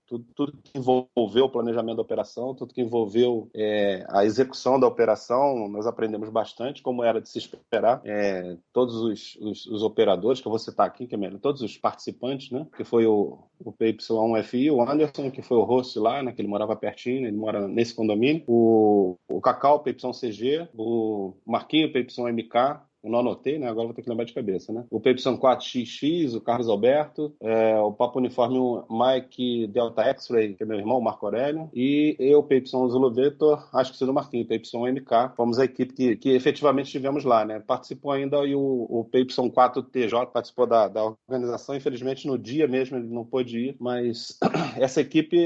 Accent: Brazilian